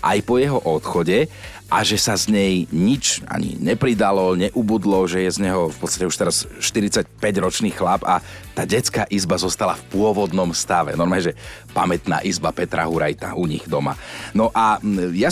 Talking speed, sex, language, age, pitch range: 170 wpm, male, Slovak, 40-59, 95-125 Hz